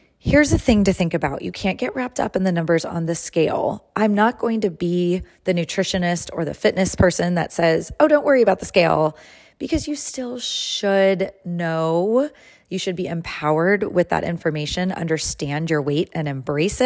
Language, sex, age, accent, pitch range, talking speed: English, female, 30-49, American, 165-205 Hz, 190 wpm